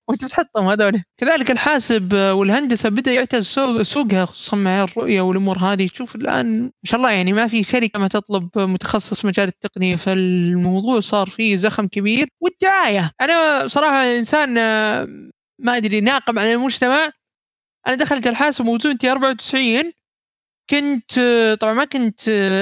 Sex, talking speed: male, 135 wpm